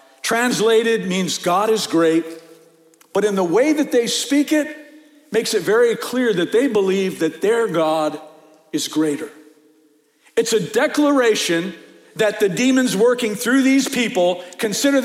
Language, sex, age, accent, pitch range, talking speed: English, male, 50-69, American, 190-250 Hz, 145 wpm